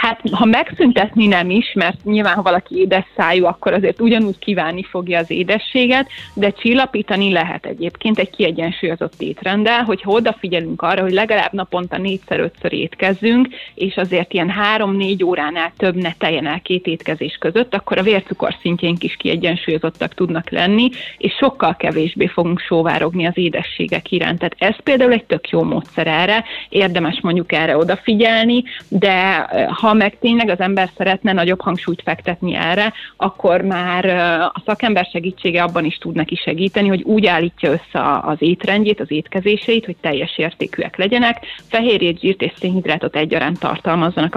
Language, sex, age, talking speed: Hungarian, female, 30-49, 155 wpm